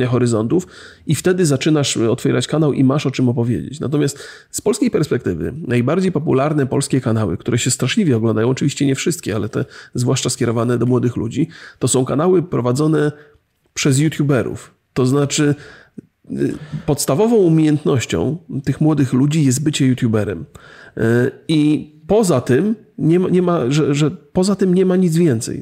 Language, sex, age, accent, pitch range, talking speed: Polish, male, 30-49, native, 120-155 Hz, 150 wpm